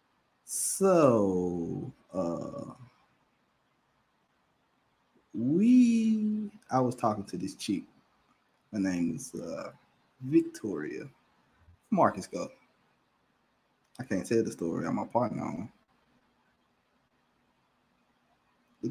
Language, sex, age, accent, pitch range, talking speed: English, male, 20-39, American, 95-125 Hz, 85 wpm